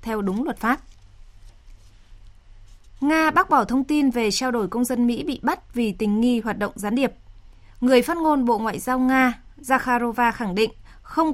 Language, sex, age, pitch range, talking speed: Vietnamese, female, 20-39, 205-255 Hz, 185 wpm